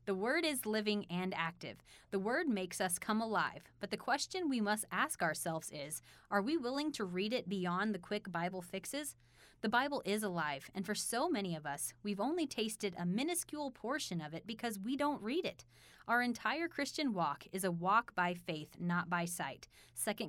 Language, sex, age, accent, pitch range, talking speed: English, female, 20-39, American, 175-240 Hz, 200 wpm